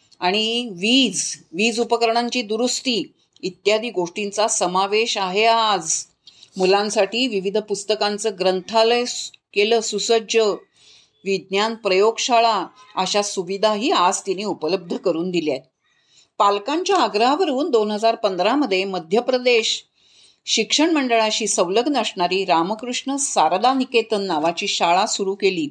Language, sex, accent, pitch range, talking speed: Marathi, female, native, 195-255 Hz, 95 wpm